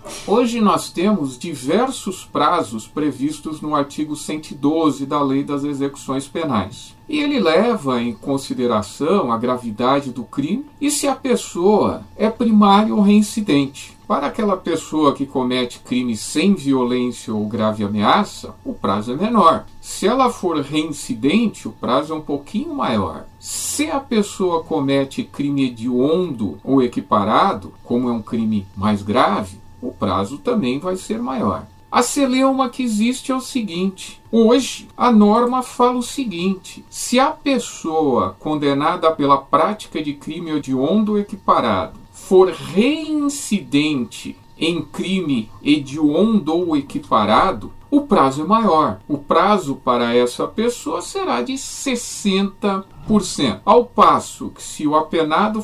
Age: 50-69